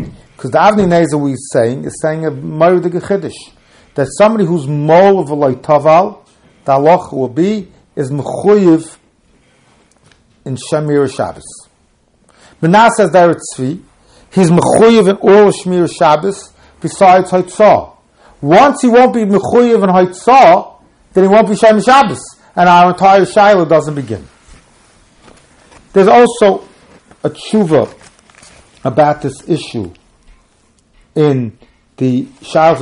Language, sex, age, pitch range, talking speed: English, male, 50-69, 140-190 Hz, 125 wpm